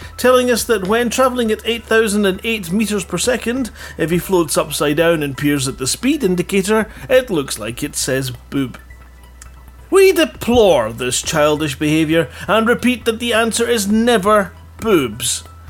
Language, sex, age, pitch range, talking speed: English, male, 40-59, 130-220 Hz, 155 wpm